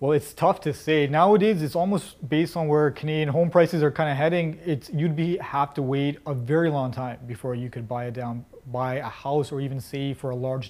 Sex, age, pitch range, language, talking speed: male, 30-49, 130-160 Hz, English, 240 wpm